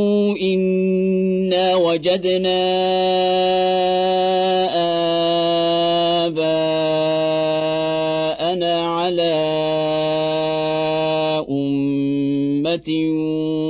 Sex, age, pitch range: male, 40-59, 155-180 Hz